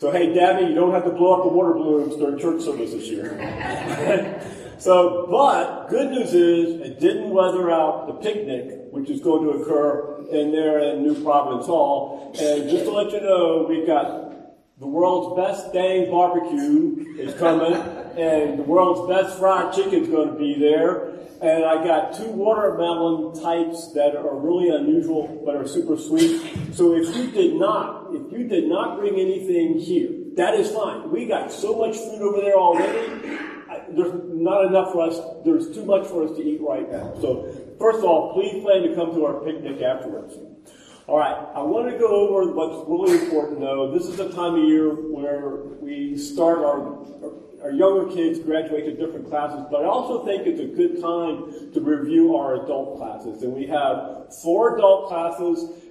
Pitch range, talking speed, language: 155-225 Hz, 185 wpm, English